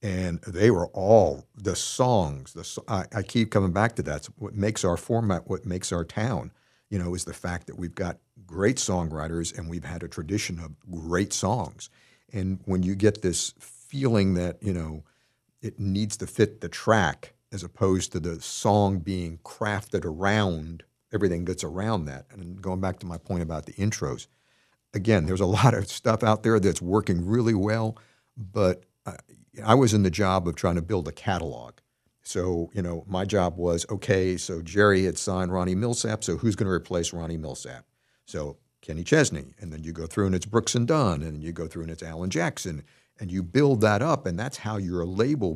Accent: American